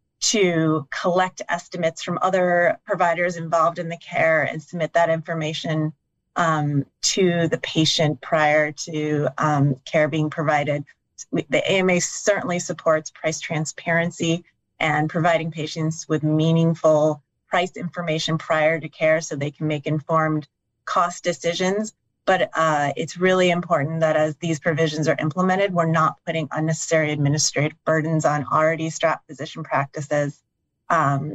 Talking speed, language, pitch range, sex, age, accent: 135 wpm, English, 155-170 Hz, female, 30-49, American